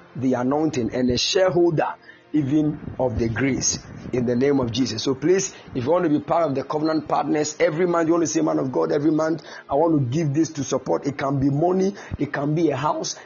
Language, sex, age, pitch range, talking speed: English, male, 50-69, 125-165 Hz, 240 wpm